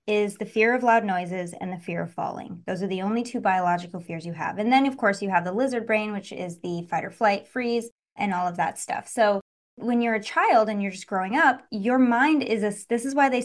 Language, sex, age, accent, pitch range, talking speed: English, female, 20-39, American, 190-235 Hz, 260 wpm